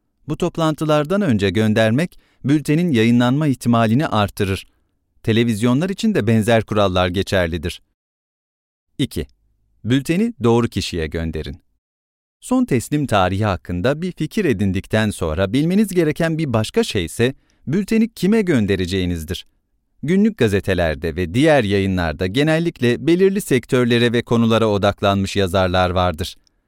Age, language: 40-59, English